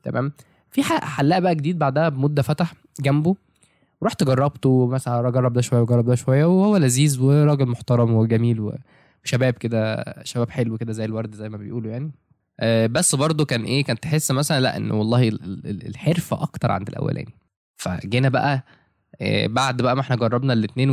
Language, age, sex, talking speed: Arabic, 20-39, male, 165 wpm